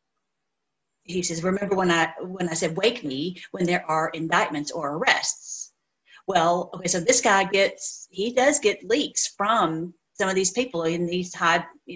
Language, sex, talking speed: English, female, 175 wpm